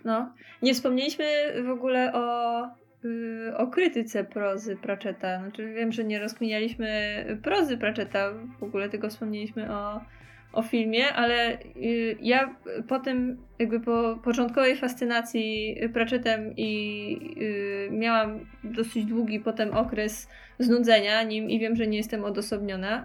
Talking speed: 135 wpm